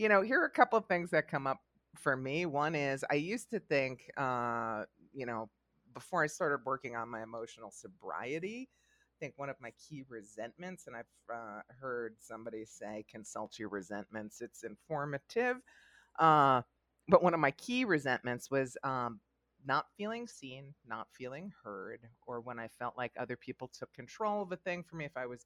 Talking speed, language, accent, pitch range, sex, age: 190 wpm, English, American, 125-175 Hz, female, 30-49